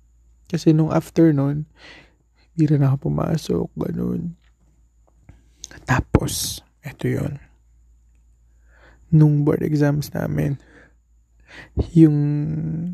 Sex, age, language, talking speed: male, 20-39, Filipino, 70 wpm